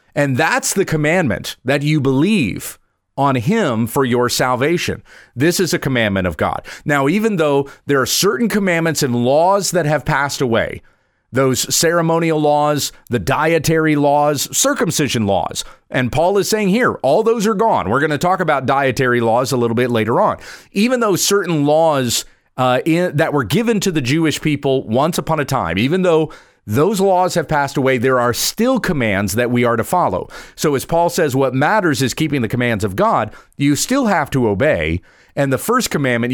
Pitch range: 125-170 Hz